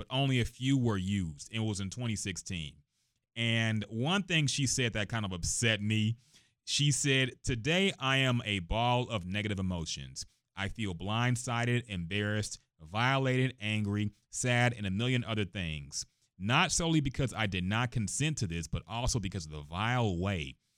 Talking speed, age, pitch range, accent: 165 wpm, 30-49, 95-130 Hz, American